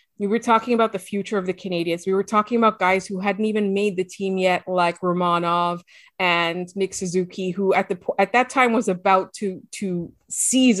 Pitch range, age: 185-210 Hz, 20-39